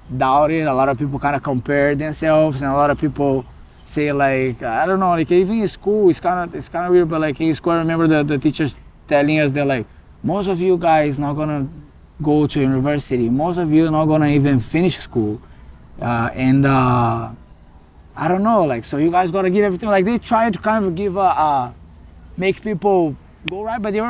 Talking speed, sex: 220 wpm, male